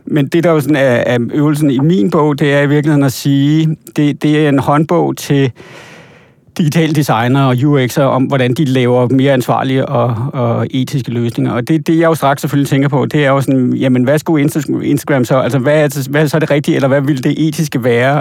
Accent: native